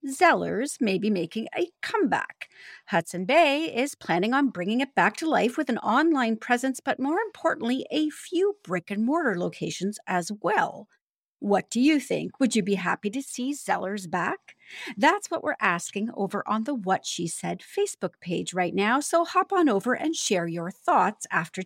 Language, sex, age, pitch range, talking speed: English, female, 40-59, 190-305 Hz, 175 wpm